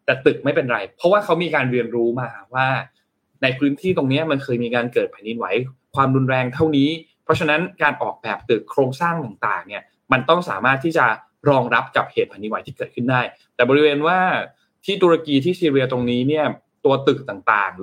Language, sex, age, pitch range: Thai, male, 20-39, 125-165 Hz